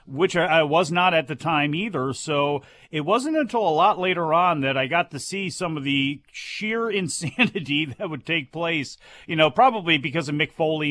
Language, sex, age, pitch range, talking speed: English, male, 40-59, 140-180 Hz, 205 wpm